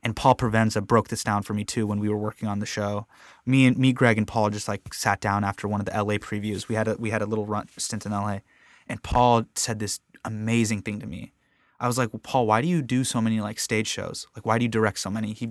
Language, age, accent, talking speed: English, 20-39, American, 285 wpm